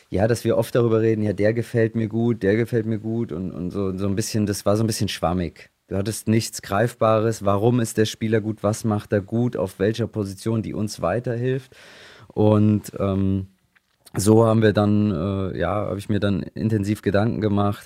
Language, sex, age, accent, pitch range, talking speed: German, male, 30-49, German, 95-110 Hz, 205 wpm